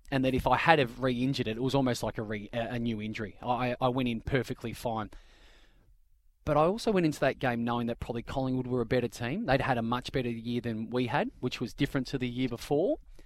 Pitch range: 115-140 Hz